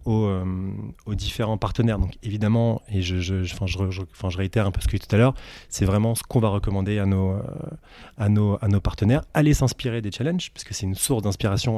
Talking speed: 250 wpm